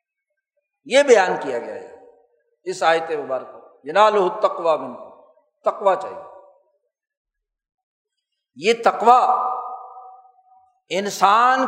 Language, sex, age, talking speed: Urdu, male, 60-79, 80 wpm